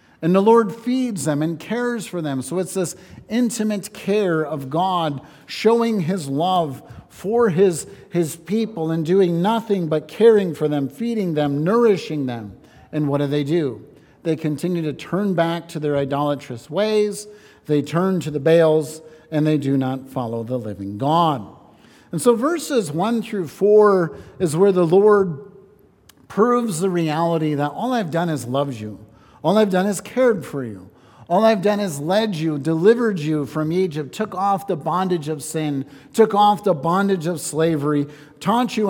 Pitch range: 145-200 Hz